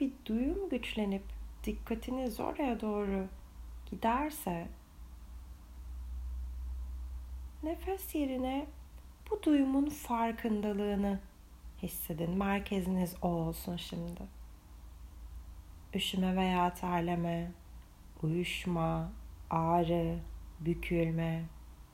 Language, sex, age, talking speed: Turkish, female, 30-49, 65 wpm